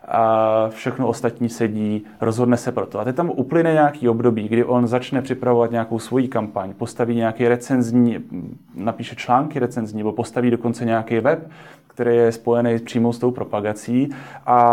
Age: 30-49